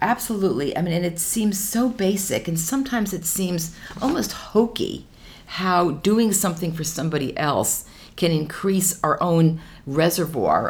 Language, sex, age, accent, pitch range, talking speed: English, female, 50-69, American, 155-210 Hz, 140 wpm